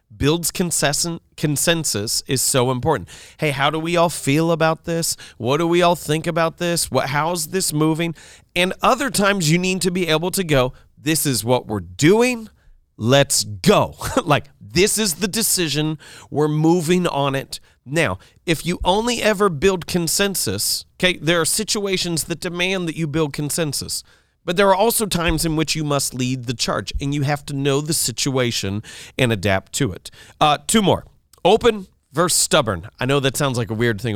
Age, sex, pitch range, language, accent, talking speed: 40-59, male, 125-170 Hz, English, American, 180 wpm